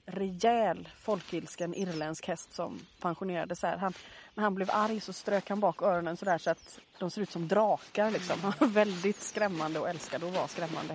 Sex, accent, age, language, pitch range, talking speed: female, native, 30-49, Swedish, 185-230 Hz, 190 wpm